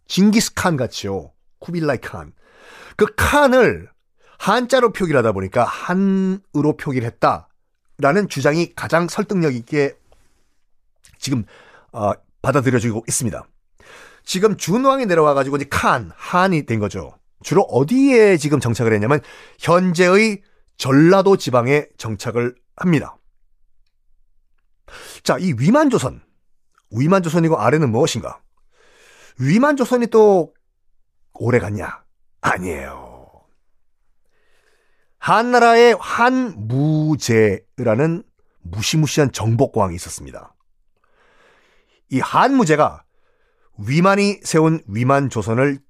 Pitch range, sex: 120-195 Hz, male